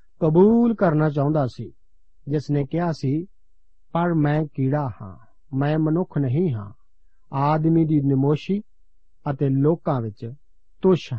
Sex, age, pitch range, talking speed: male, 50-69, 130-175 Hz, 125 wpm